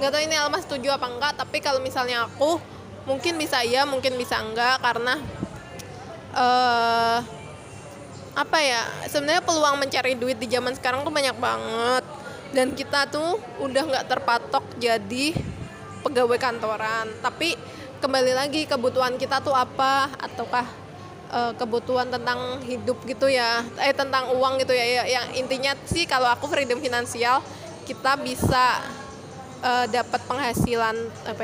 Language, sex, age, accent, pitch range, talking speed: Indonesian, female, 20-39, native, 245-275 Hz, 135 wpm